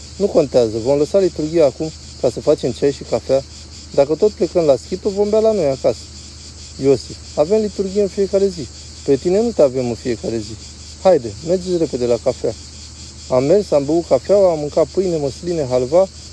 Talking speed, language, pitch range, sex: 185 wpm, Romanian, 110-160 Hz, male